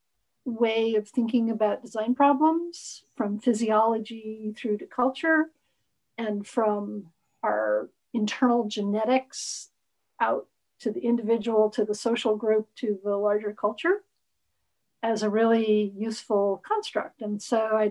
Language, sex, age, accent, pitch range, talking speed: English, female, 50-69, American, 205-235 Hz, 120 wpm